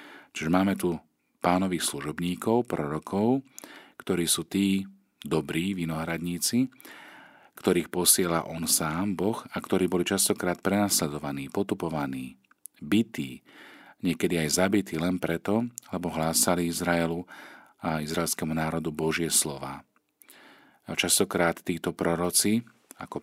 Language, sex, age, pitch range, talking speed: Slovak, male, 40-59, 80-95 Hz, 105 wpm